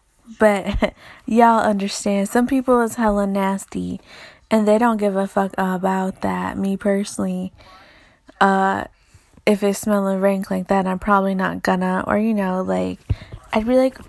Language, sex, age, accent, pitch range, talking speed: English, female, 20-39, American, 195-225 Hz, 155 wpm